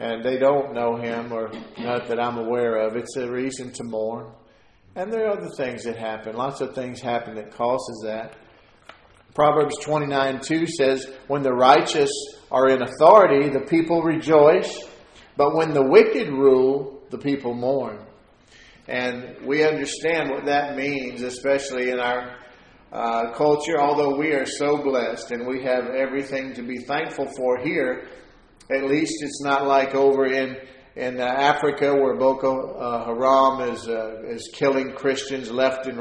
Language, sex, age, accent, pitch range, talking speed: English, male, 50-69, American, 120-140 Hz, 160 wpm